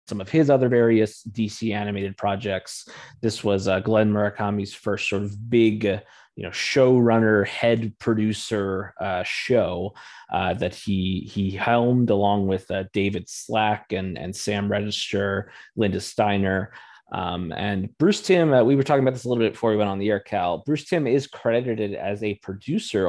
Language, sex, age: English, male, 20-39